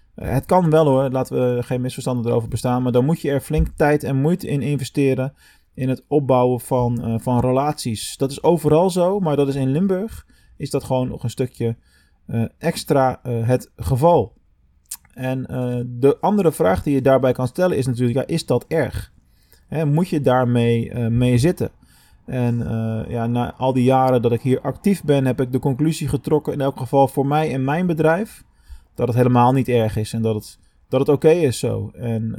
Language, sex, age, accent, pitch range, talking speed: Dutch, male, 20-39, Dutch, 120-145 Hz, 200 wpm